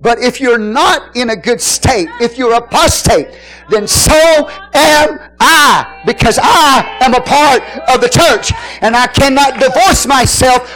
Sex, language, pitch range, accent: male, English, 245-330 Hz, American